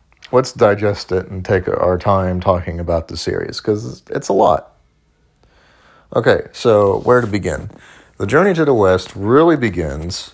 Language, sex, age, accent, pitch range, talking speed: English, male, 30-49, American, 95-110 Hz, 155 wpm